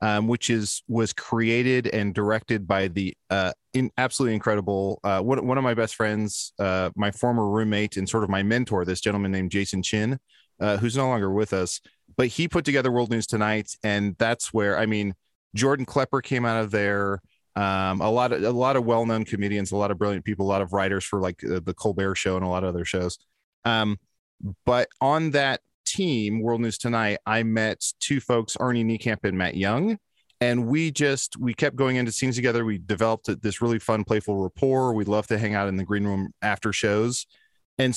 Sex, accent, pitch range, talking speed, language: male, American, 100-125 Hz, 210 wpm, English